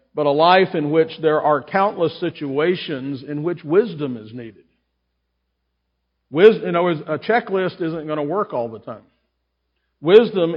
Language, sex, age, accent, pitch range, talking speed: English, male, 50-69, American, 125-170 Hz, 155 wpm